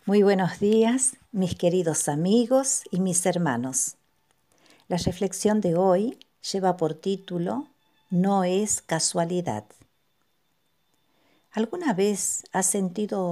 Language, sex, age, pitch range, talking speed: Spanish, female, 50-69, 165-205 Hz, 105 wpm